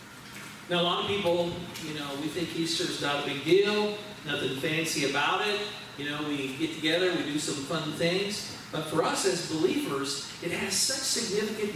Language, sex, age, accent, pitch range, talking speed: English, male, 40-59, American, 160-230 Hz, 190 wpm